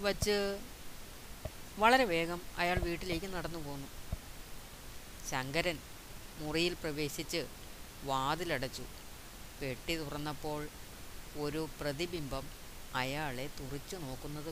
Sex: female